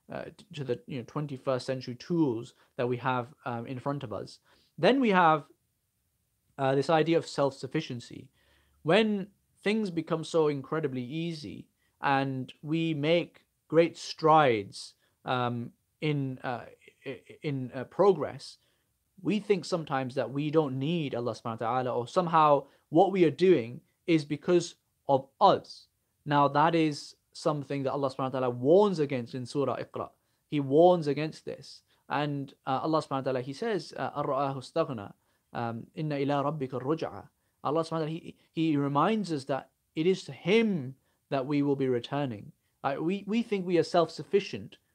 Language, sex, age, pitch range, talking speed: English, male, 30-49, 130-160 Hz, 155 wpm